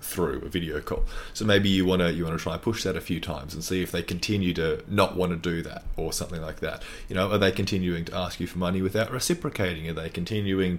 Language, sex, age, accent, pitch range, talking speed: English, male, 30-49, Australian, 85-100 Hz, 275 wpm